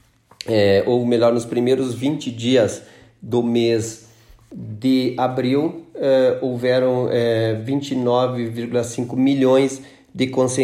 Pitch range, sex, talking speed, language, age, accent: 120-135 Hz, male, 95 wpm, Portuguese, 40-59, Brazilian